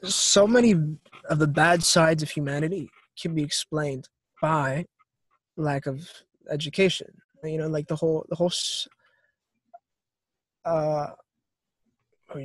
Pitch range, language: 145-180 Hz, English